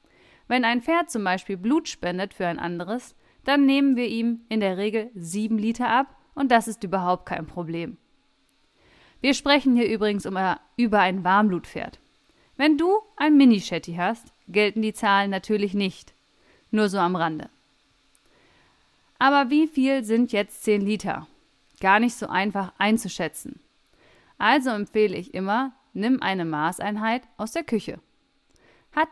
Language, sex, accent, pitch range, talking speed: German, female, German, 190-260 Hz, 145 wpm